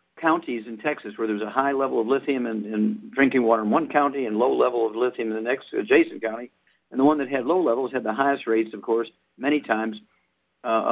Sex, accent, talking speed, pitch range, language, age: male, American, 235 wpm, 115-150 Hz, English, 50-69